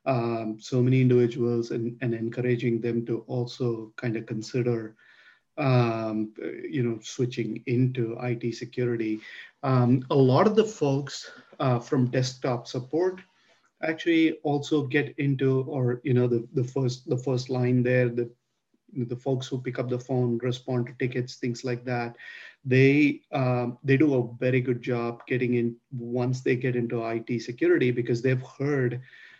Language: English